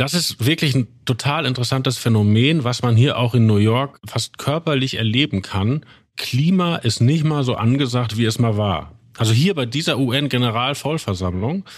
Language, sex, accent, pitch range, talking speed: German, male, German, 115-145 Hz, 170 wpm